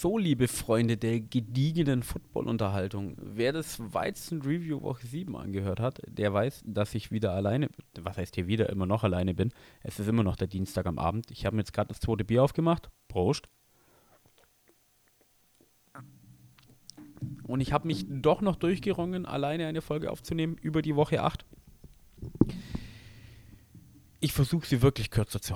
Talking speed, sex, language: 155 wpm, male, German